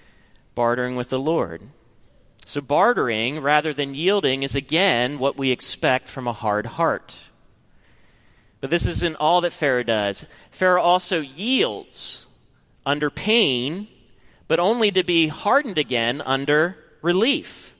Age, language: 30-49, English